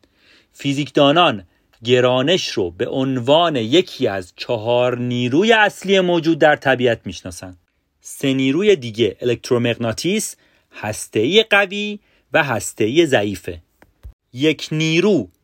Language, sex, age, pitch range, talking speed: Persian, male, 40-59, 100-155 Hz, 95 wpm